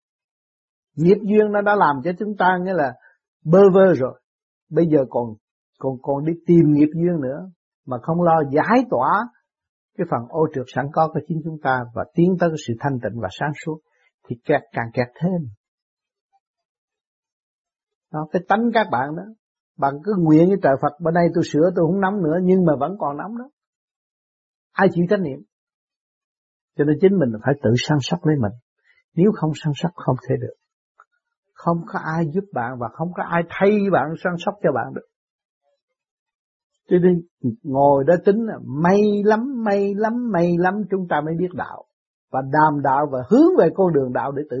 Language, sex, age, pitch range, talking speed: Vietnamese, male, 60-79, 145-200 Hz, 190 wpm